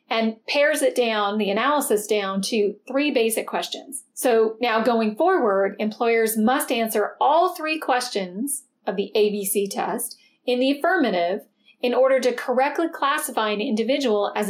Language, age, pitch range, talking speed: English, 40-59, 210-265 Hz, 150 wpm